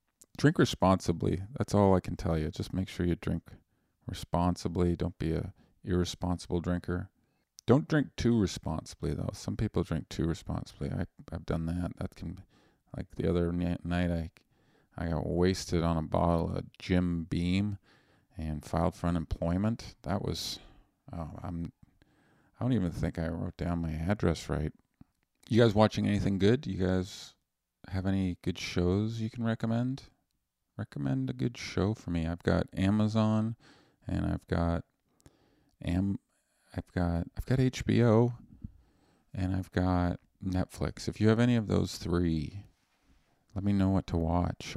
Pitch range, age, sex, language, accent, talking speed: 85-105 Hz, 40-59, male, English, American, 155 wpm